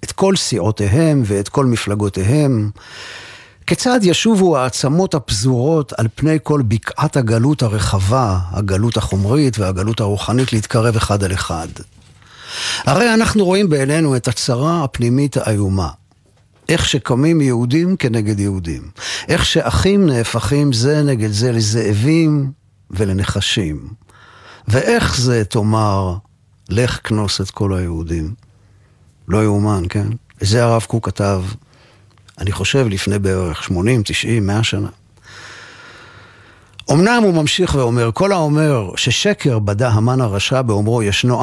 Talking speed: 115 wpm